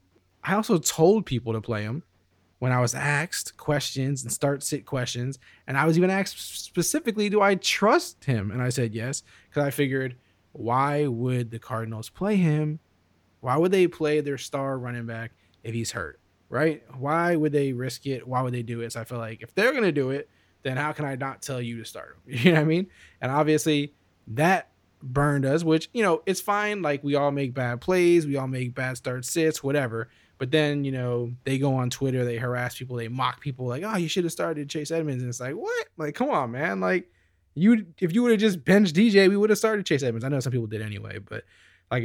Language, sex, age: English, male, 20-39